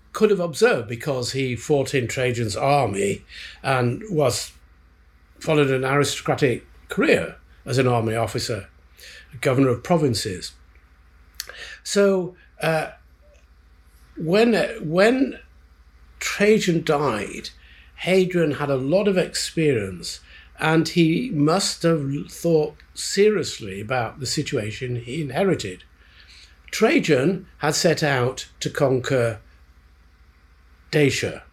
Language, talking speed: English, 100 wpm